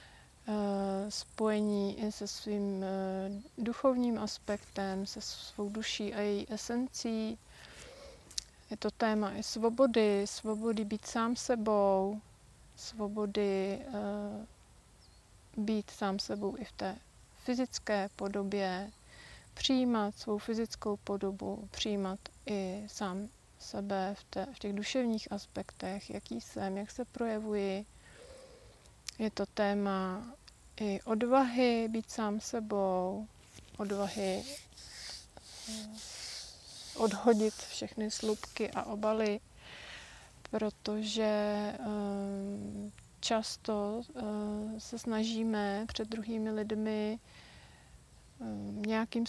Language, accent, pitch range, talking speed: Czech, native, 200-220 Hz, 85 wpm